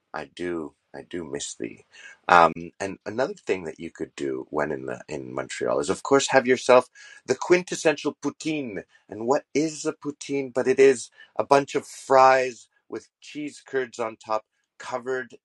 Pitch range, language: 100-160 Hz, English